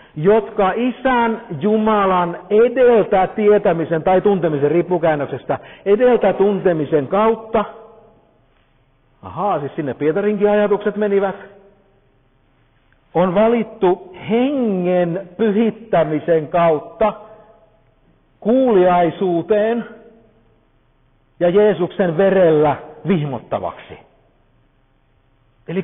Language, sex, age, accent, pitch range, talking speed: Finnish, male, 50-69, native, 150-215 Hz, 65 wpm